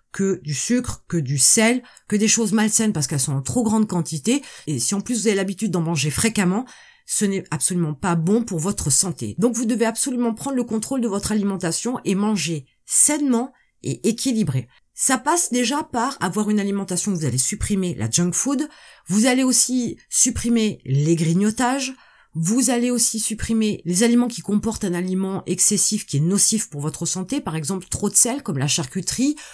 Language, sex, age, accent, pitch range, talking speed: French, female, 30-49, French, 170-240 Hz, 195 wpm